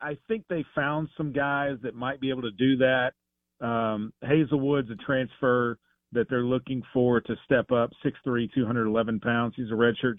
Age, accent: 40-59, American